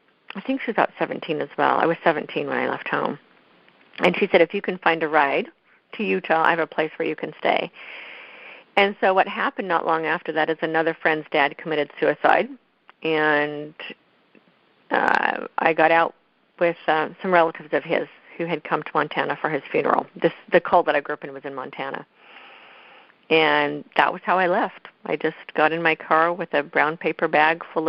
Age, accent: 50-69, American